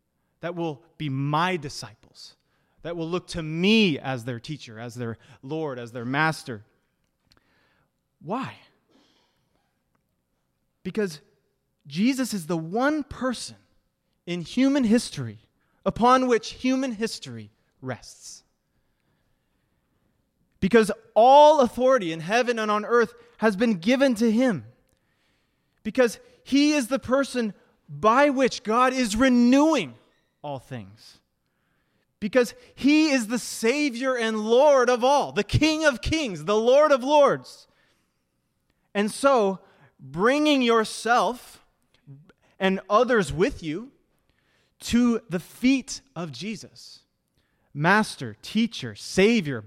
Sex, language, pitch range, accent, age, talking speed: male, English, 150-245 Hz, American, 30-49, 110 wpm